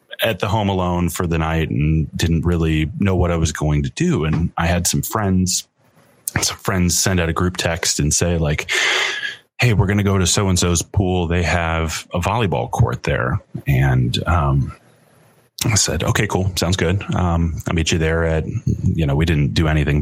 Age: 30-49